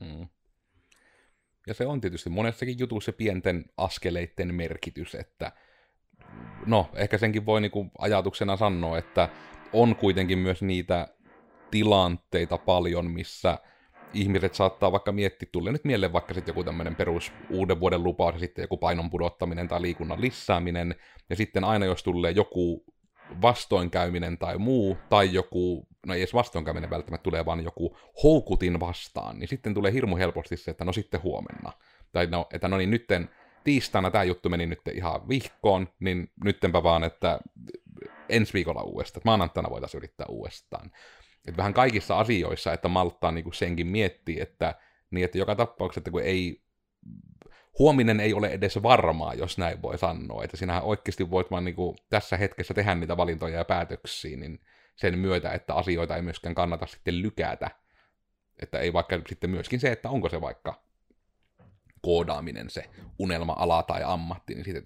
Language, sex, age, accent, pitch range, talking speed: Finnish, male, 30-49, native, 85-100 Hz, 160 wpm